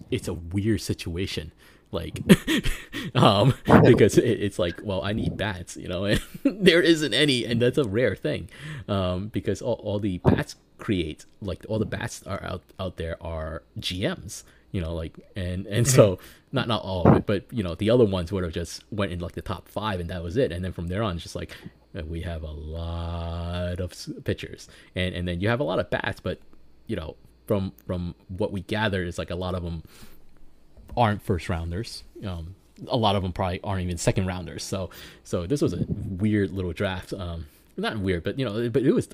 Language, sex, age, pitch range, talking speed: English, male, 20-39, 85-105 Hz, 215 wpm